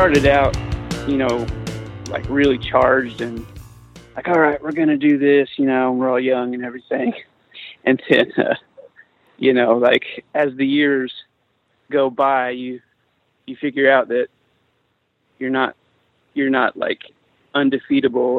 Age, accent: 30-49, American